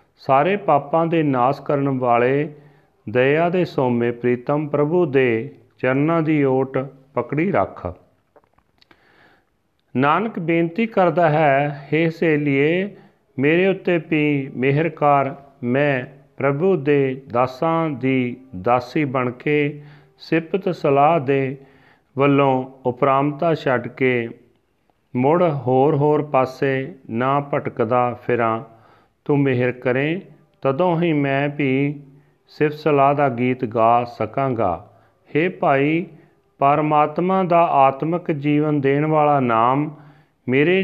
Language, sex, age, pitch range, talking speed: Punjabi, male, 40-59, 130-155 Hz, 105 wpm